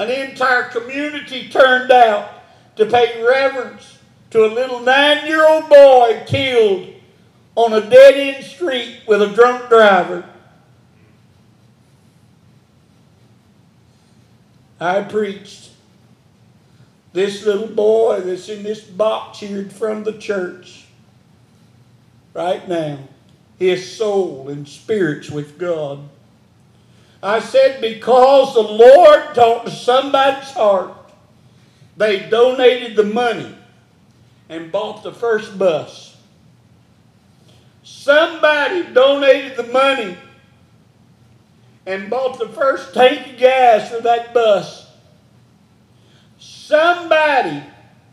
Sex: male